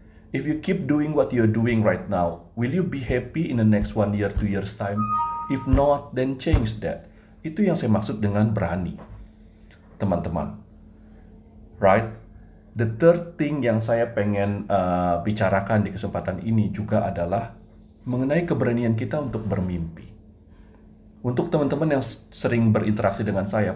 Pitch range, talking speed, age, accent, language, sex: 100-135 Hz, 150 wpm, 30-49, Malaysian, Indonesian, male